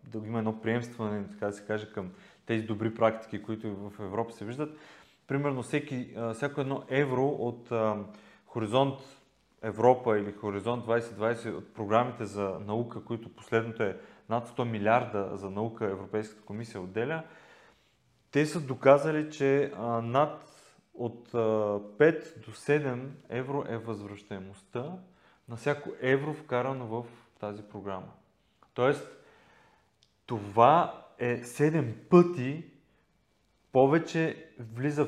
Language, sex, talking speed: Bulgarian, male, 115 wpm